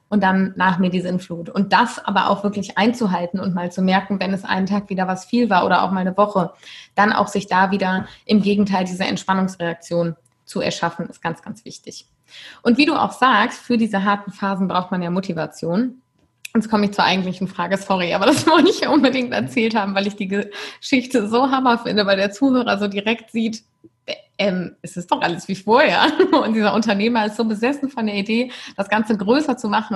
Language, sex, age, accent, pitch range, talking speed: German, female, 20-39, German, 185-235 Hz, 210 wpm